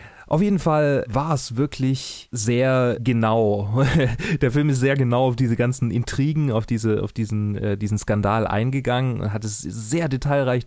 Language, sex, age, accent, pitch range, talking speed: German, male, 30-49, German, 100-120 Hz, 165 wpm